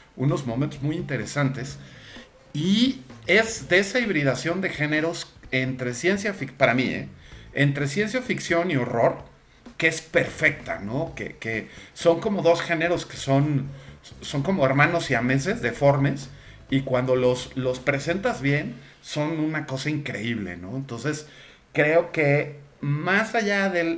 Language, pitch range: Spanish, 130-165 Hz